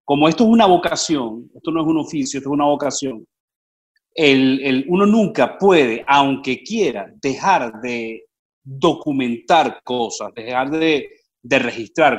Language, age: Spanish, 40-59